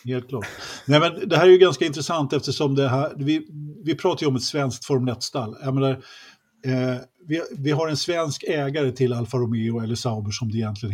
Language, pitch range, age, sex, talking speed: Swedish, 120-150 Hz, 50-69, male, 210 wpm